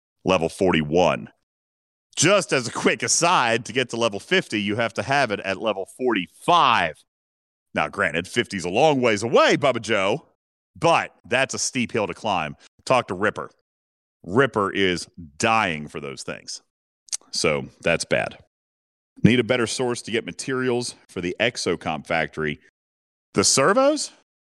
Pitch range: 95-145 Hz